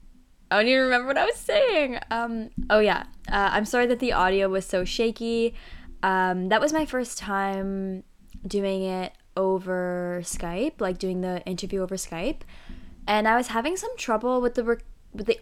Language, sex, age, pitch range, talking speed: English, female, 10-29, 185-225 Hz, 180 wpm